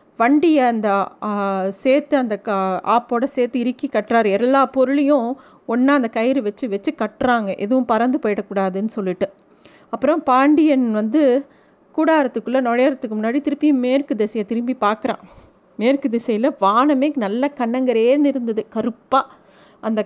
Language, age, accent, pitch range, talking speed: Tamil, 40-59, native, 230-290 Hz, 115 wpm